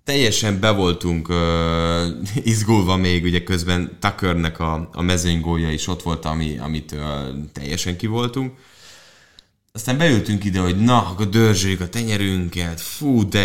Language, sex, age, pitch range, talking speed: English, male, 30-49, 80-105 Hz, 140 wpm